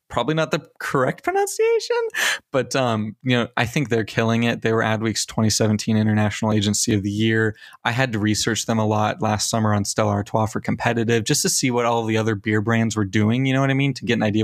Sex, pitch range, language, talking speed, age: male, 110-125 Hz, English, 235 wpm, 20-39